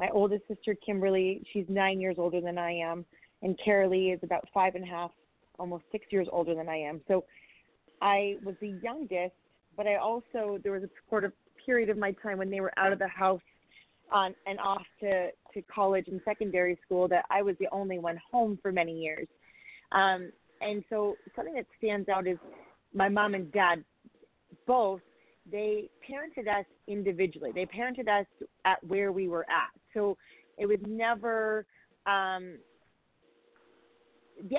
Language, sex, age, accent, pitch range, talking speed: English, female, 30-49, American, 180-205 Hz, 175 wpm